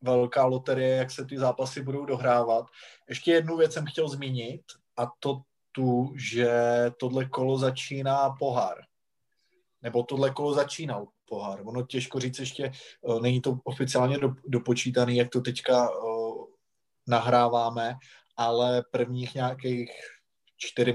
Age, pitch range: 20-39, 115-135 Hz